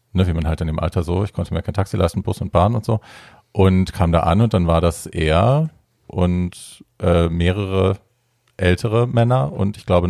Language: German